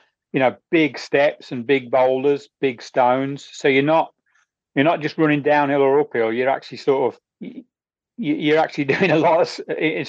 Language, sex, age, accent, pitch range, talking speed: English, male, 40-59, British, 130-155 Hz, 180 wpm